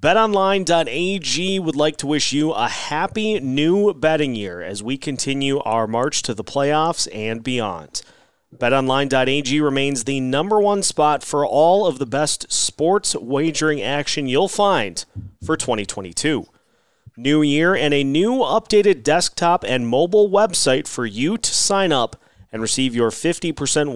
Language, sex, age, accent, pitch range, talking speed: English, male, 30-49, American, 130-165 Hz, 145 wpm